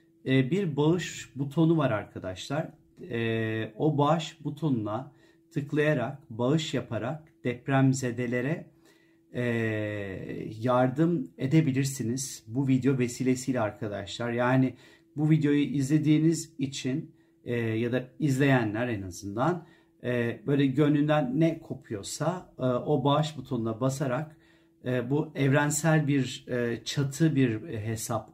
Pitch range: 120-155 Hz